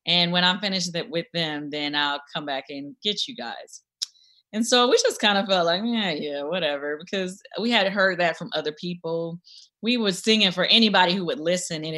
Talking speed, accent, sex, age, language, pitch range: 210 wpm, American, female, 20-39, English, 165-205 Hz